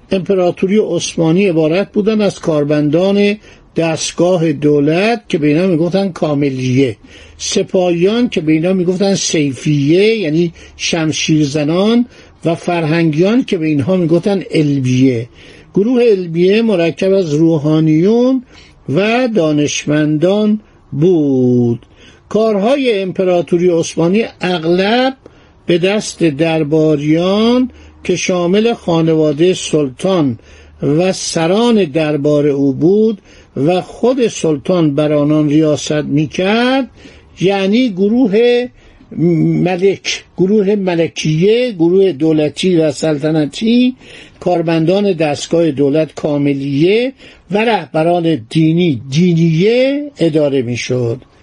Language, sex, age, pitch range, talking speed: Persian, male, 60-79, 155-200 Hz, 90 wpm